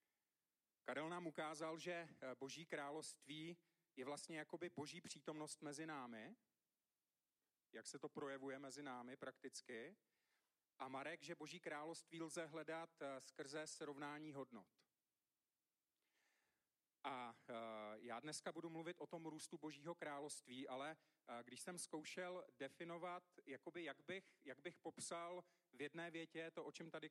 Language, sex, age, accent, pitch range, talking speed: Czech, male, 40-59, native, 145-170 Hz, 130 wpm